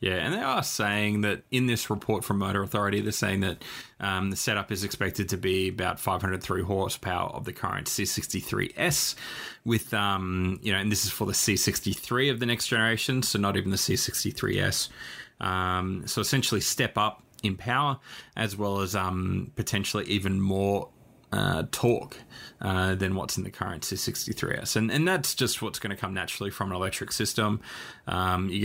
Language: English